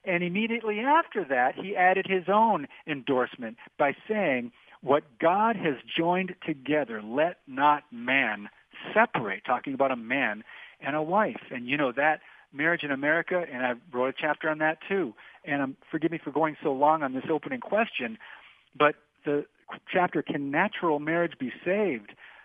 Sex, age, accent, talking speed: male, 50-69, American, 165 wpm